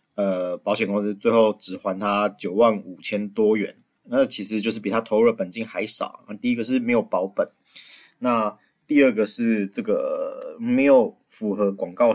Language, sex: Chinese, male